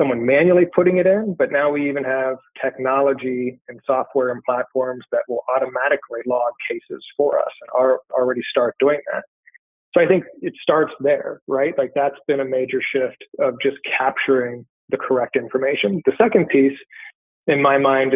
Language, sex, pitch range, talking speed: English, male, 130-145 Hz, 175 wpm